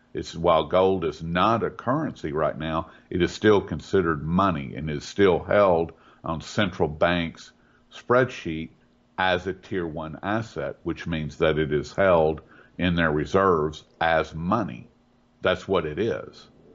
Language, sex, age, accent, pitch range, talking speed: English, male, 50-69, American, 75-95 Hz, 150 wpm